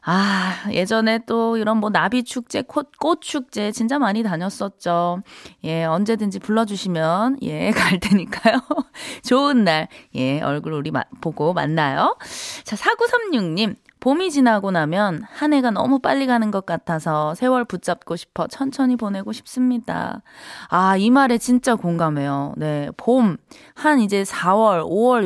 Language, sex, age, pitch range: Korean, female, 20-39, 180-255 Hz